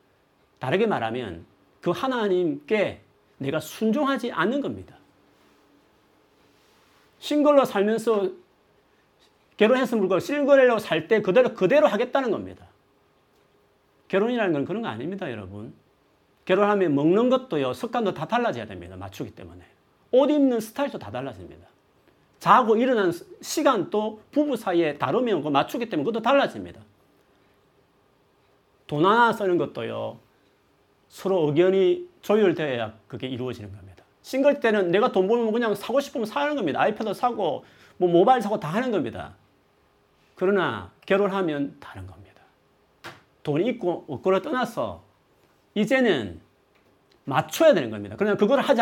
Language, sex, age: Korean, male, 40-59